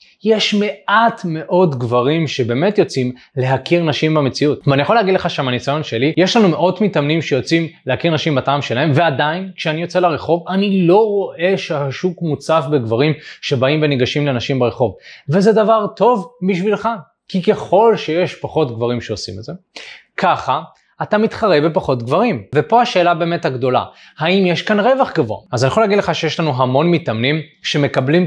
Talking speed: 155 wpm